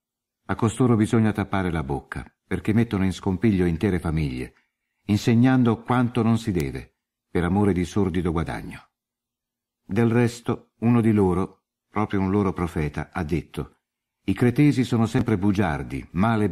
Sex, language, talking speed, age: male, Italian, 140 wpm, 60-79